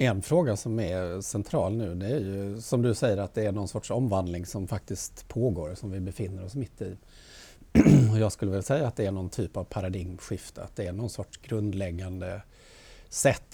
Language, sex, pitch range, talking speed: Swedish, male, 100-120 Hz, 200 wpm